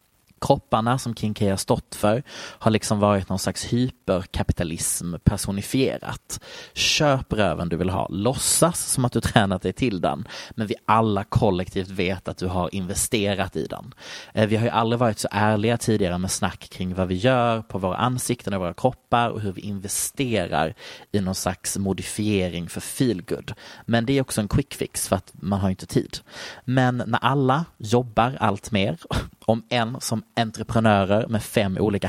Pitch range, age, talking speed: 95-120 Hz, 30-49, 170 wpm